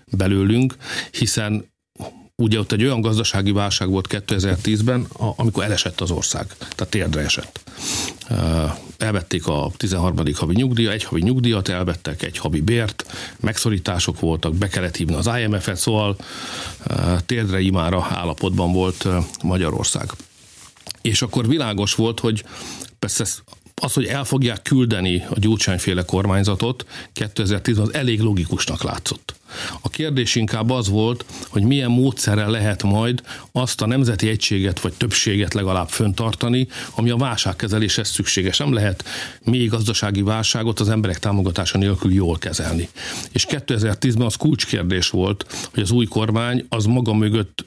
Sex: male